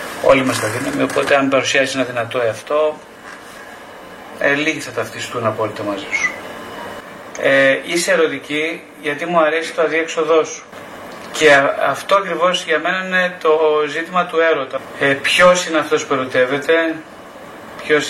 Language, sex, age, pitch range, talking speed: Greek, male, 30-49, 130-160 Hz, 145 wpm